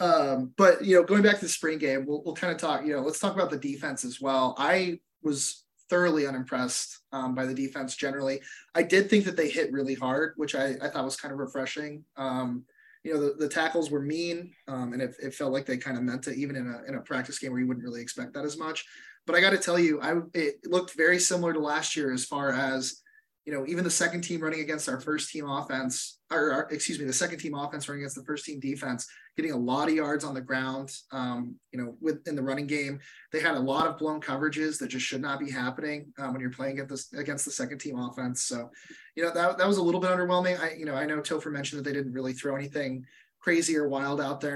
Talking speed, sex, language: 260 wpm, male, English